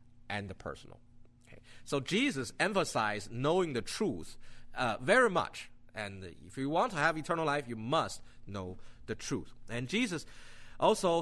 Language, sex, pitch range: English, male, 120-185 Hz